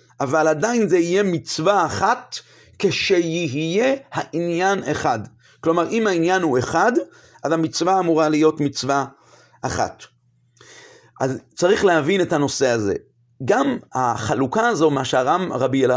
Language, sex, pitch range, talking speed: Hebrew, male, 130-180 Hz, 125 wpm